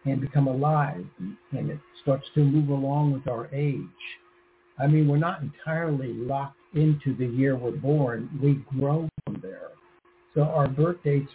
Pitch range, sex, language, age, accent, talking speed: 135-155 Hz, male, English, 60-79, American, 165 wpm